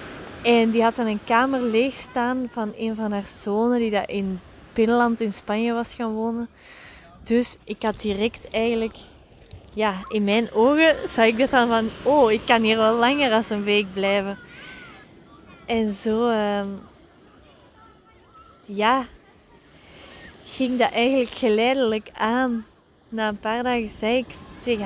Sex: female